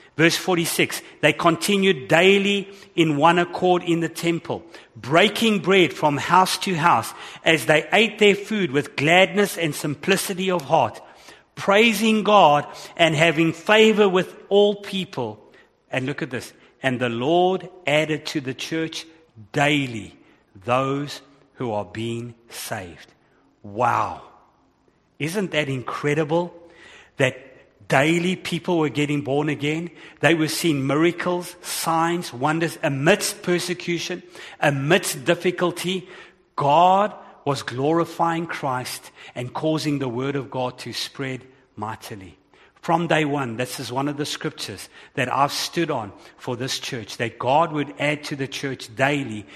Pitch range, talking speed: 130-170 Hz, 135 wpm